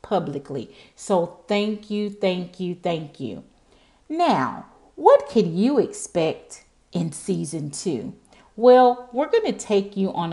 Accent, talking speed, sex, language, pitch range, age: American, 135 wpm, female, English, 155-205 Hz, 40-59